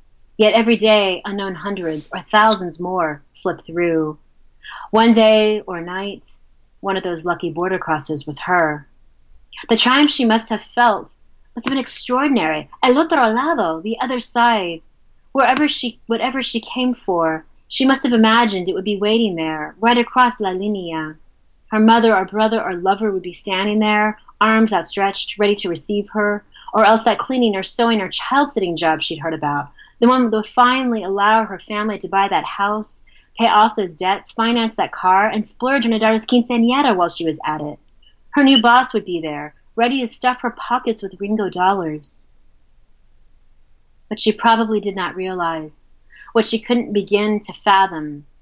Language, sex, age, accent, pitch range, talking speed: English, female, 30-49, American, 165-225 Hz, 175 wpm